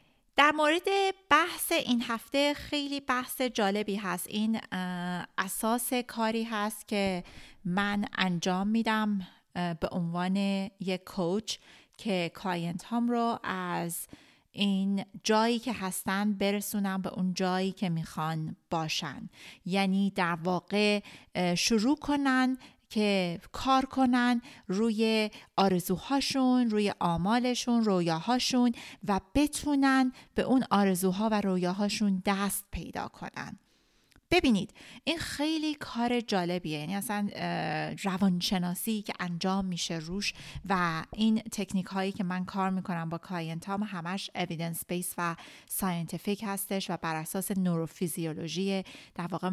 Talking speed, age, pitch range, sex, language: 115 wpm, 30-49, 180-225 Hz, female, Persian